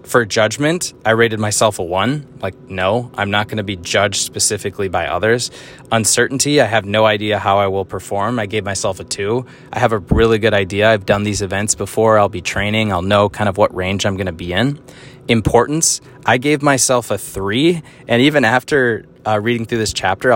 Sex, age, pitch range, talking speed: male, 20-39, 100-125 Hz, 210 wpm